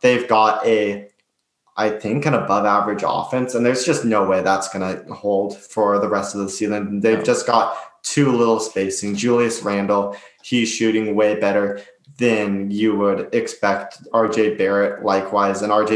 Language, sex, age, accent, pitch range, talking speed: English, male, 20-39, American, 100-110 Hz, 165 wpm